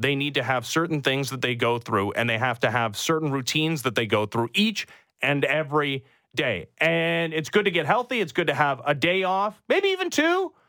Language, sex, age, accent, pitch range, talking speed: English, male, 30-49, American, 130-175 Hz, 230 wpm